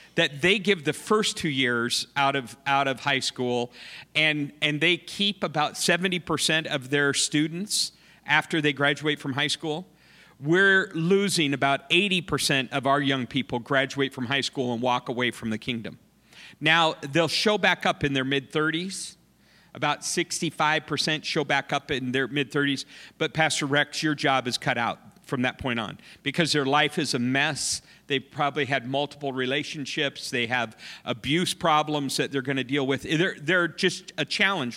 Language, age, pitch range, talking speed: English, 50-69, 140-175 Hz, 175 wpm